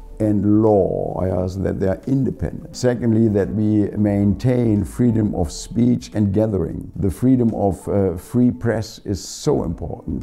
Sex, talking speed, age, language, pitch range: male, 145 wpm, 60-79, English, 90-115 Hz